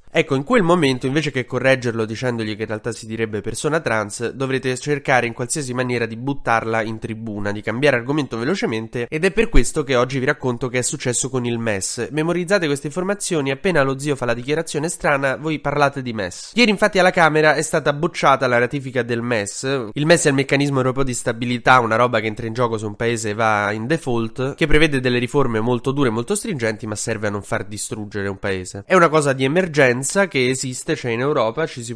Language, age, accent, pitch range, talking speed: Italian, 20-39, native, 115-145 Hz, 220 wpm